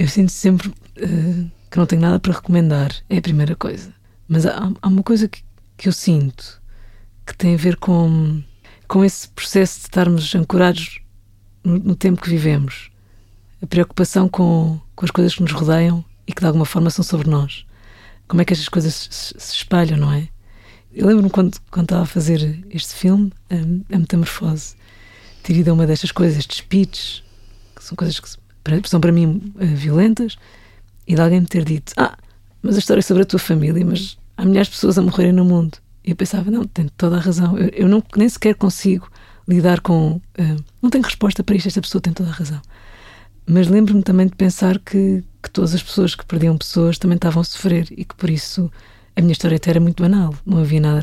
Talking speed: 210 wpm